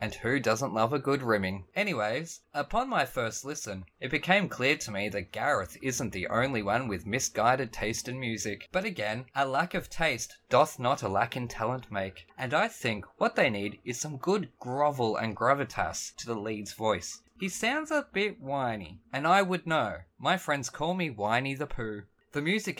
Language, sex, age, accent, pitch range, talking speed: English, male, 20-39, Australian, 110-150 Hz, 195 wpm